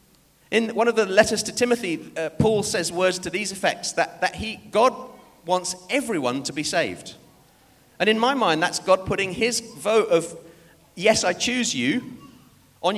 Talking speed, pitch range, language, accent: 175 wpm, 150-230 Hz, English, British